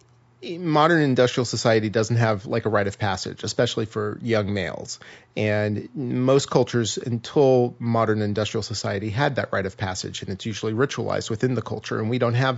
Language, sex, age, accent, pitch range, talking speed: English, male, 30-49, American, 105-120 Hz, 175 wpm